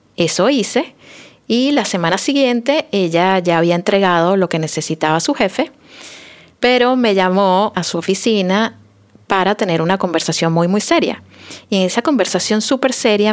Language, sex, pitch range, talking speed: Spanish, female, 185-240 Hz, 160 wpm